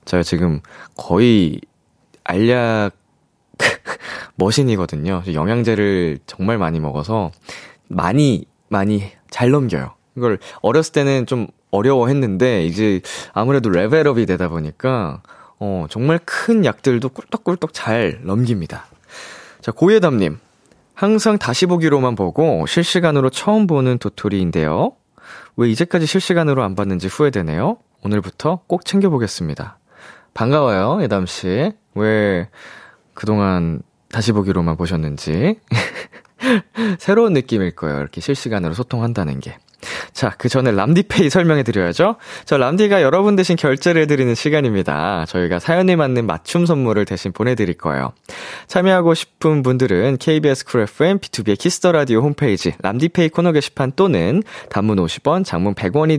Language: Korean